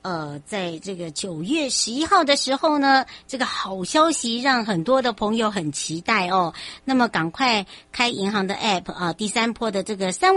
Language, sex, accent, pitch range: Chinese, male, American, 180-240 Hz